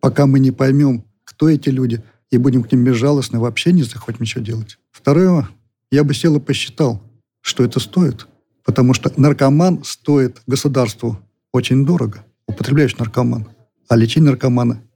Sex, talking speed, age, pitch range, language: male, 155 wpm, 40-59, 115-135 Hz, Russian